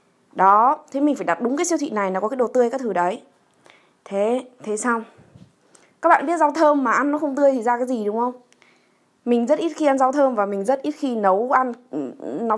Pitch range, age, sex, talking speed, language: 210-270 Hz, 20-39, female, 250 wpm, Vietnamese